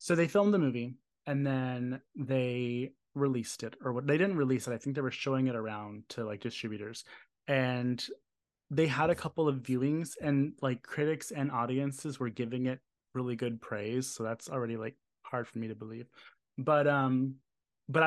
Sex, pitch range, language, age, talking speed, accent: male, 125-150 Hz, English, 20-39, 185 wpm, American